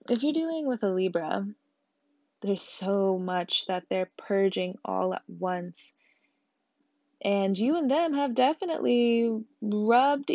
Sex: female